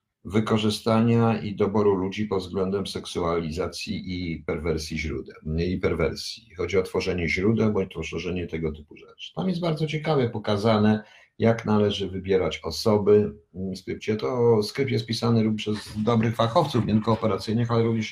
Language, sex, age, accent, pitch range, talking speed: Polish, male, 50-69, native, 90-120 Hz, 140 wpm